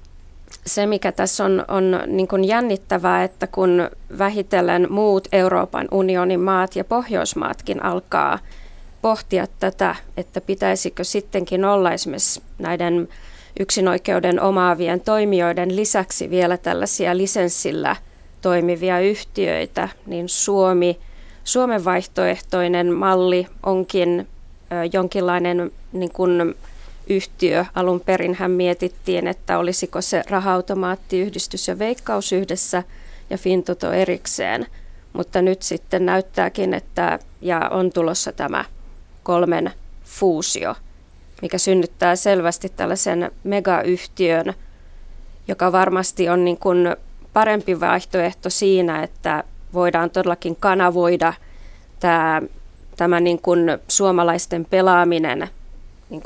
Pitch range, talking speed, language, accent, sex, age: 175-190 Hz, 100 wpm, Finnish, native, female, 20-39